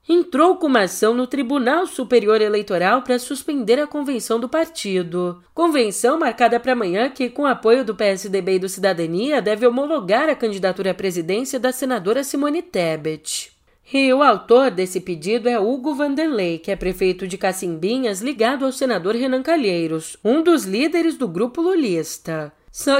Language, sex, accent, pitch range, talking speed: Portuguese, female, Brazilian, 185-270 Hz, 160 wpm